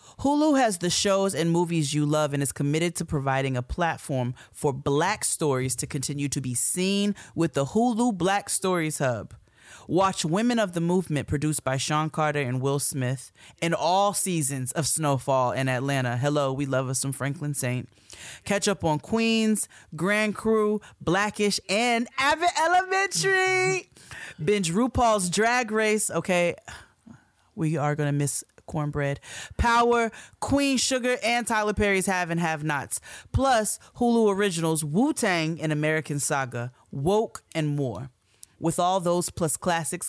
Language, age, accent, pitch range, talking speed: English, 30-49, American, 140-195 Hz, 150 wpm